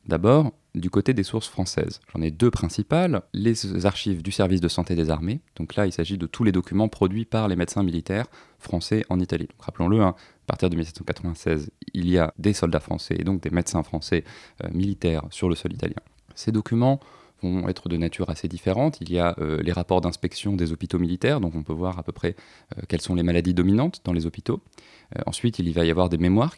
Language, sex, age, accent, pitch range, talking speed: French, male, 30-49, French, 85-105 Hz, 220 wpm